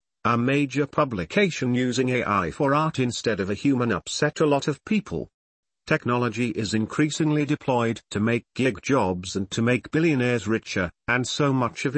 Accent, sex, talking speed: British, male, 165 wpm